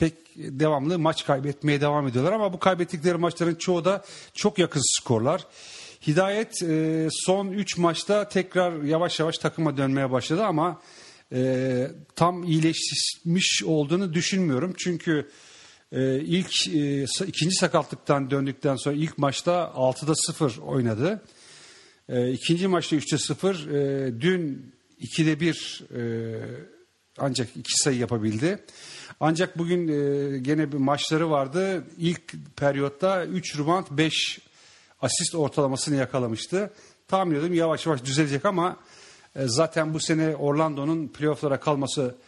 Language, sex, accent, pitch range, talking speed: English, male, Turkish, 140-175 Hz, 125 wpm